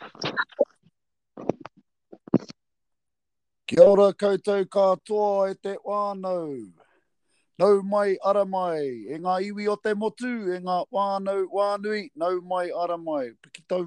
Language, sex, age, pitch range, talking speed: English, male, 30-49, 155-200 Hz, 105 wpm